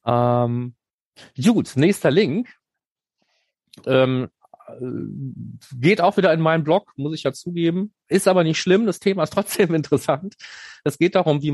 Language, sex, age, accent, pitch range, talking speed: German, male, 30-49, German, 105-125 Hz, 145 wpm